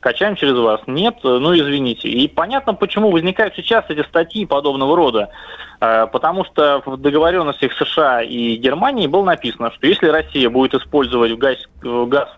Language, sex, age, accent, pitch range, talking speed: Russian, male, 20-39, native, 135-185 Hz, 150 wpm